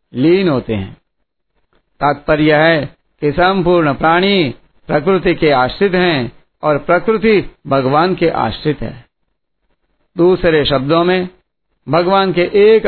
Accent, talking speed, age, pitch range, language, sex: native, 110 wpm, 60-79, 145-180 Hz, Hindi, male